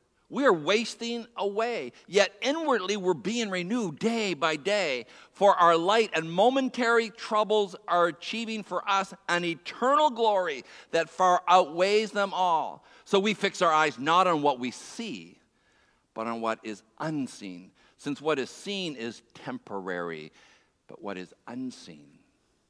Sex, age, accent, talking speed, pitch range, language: male, 50-69, American, 145 wpm, 145-225 Hz, English